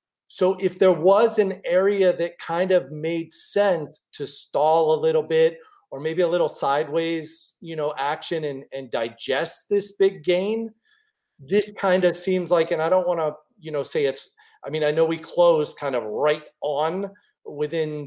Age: 40-59